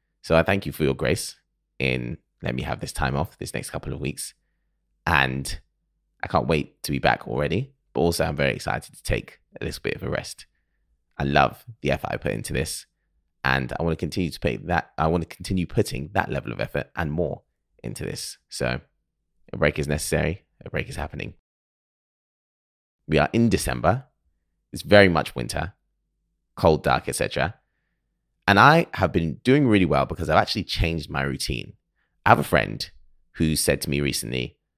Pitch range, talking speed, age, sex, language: 70-90 Hz, 190 wpm, 20-39, male, English